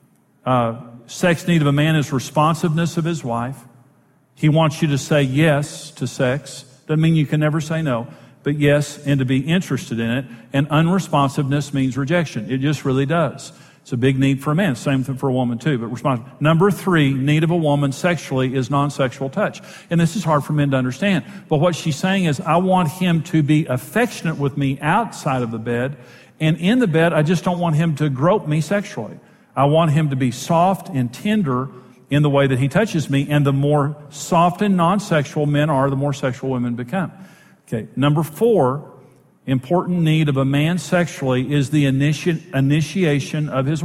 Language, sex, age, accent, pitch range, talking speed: English, male, 50-69, American, 135-170 Hz, 205 wpm